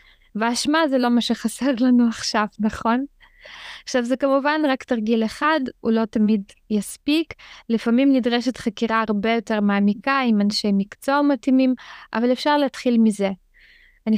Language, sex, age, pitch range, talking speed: Hebrew, female, 20-39, 220-270 Hz, 140 wpm